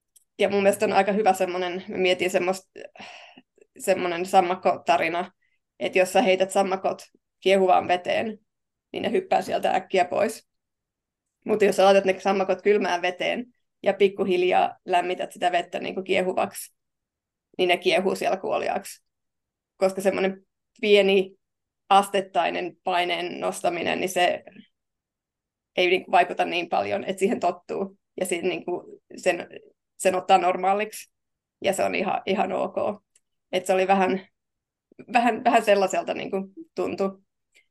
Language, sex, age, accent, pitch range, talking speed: Finnish, female, 20-39, native, 180-205 Hz, 130 wpm